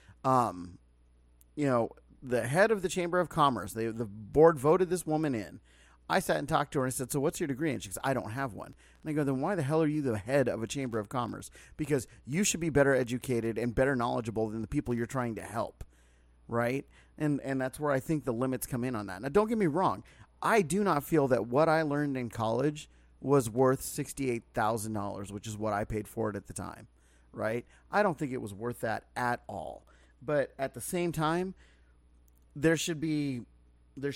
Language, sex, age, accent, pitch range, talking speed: English, male, 30-49, American, 105-145 Hz, 225 wpm